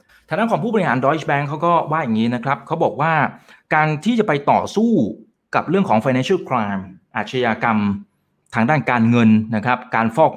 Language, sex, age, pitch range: Thai, male, 30-49, 115-160 Hz